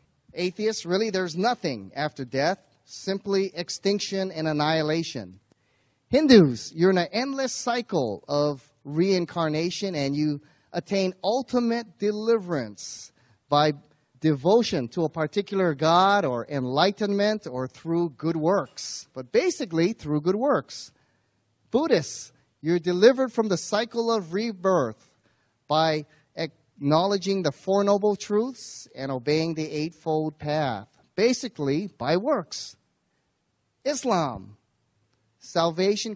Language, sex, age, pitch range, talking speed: English, male, 30-49, 135-190 Hz, 105 wpm